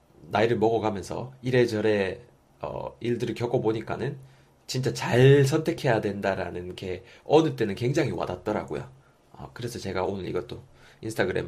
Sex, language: male, Korean